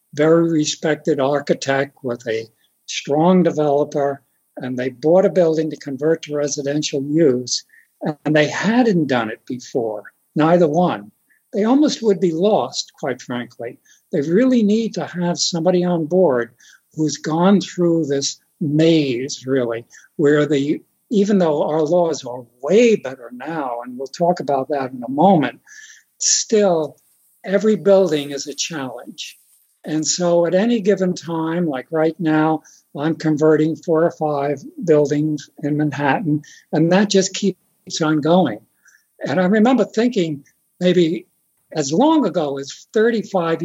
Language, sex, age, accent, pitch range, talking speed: English, male, 60-79, American, 145-195 Hz, 140 wpm